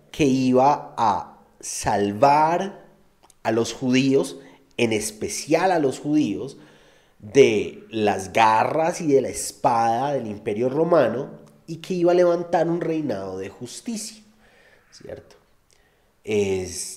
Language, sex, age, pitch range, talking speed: Spanish, male, 30-49, 110-155 Hz, 115 wpm